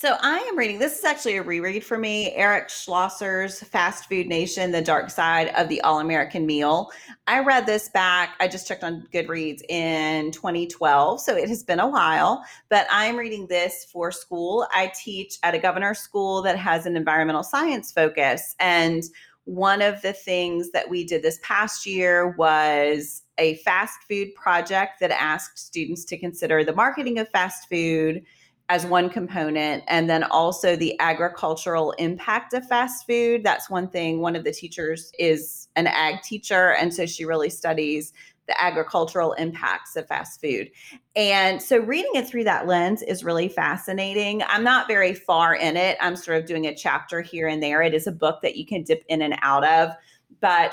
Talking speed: 185 wpm